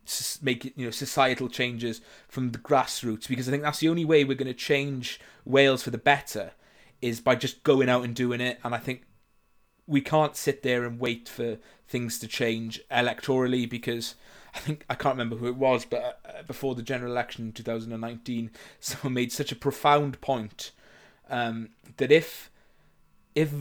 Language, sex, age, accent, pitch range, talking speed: English, male, 20-39, British, 115-135 Hz, 185 wpm